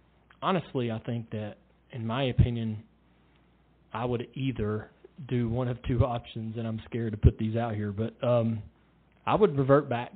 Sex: male